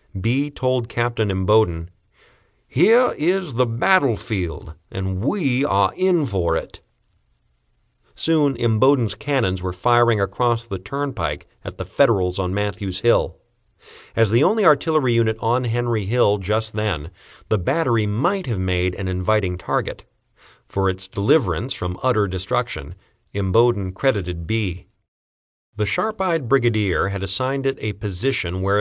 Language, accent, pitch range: English, American, 95-130 Hz